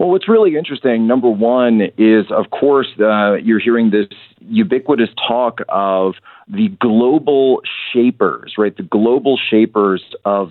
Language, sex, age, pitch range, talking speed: English, male, 40-59, 95-130 Hz, 135 wpm